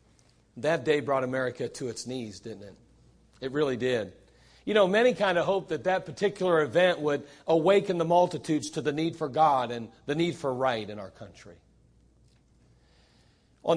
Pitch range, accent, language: 115-165 Hz, American, English